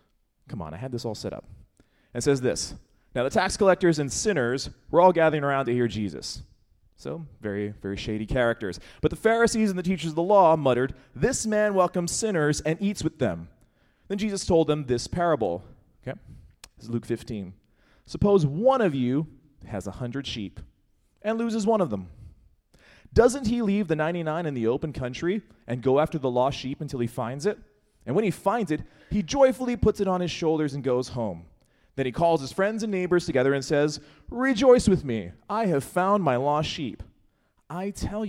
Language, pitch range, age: English, 120-180 Hz, 30-49